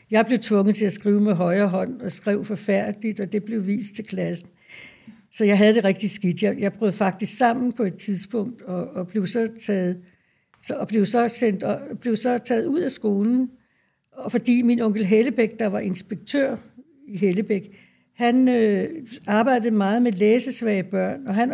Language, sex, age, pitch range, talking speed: Danish, female, 60-79, 205-240 Hz, 160 wpm